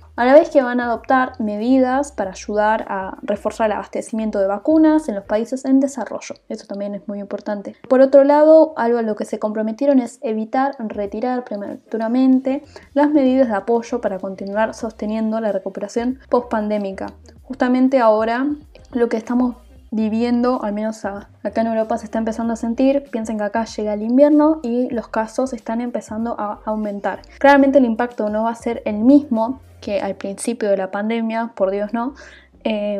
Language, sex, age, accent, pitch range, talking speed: Spanish, female, 10-29, Argentinian, 205-260 Hz, 175 wpm